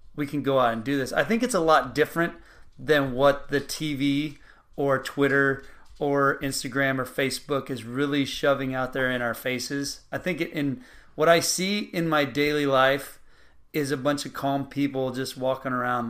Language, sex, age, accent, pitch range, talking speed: English, male, 30-49, American, 130-150 Hz, 185 wpm